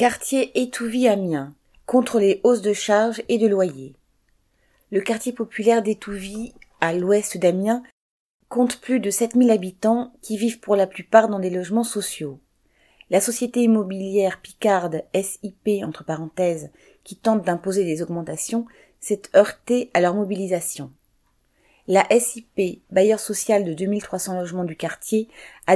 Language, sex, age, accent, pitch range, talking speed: French, female, 30-49, French, 175-220 Hz, 135 wpm